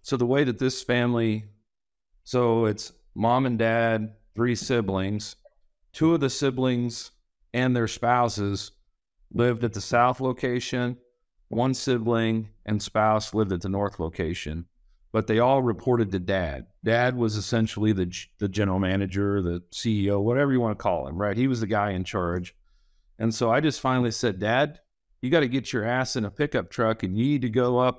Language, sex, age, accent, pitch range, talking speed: English, male, 40-59, American, 100-125 Hz, 180 wpm